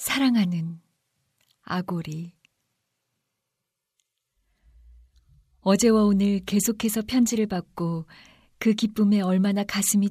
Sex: female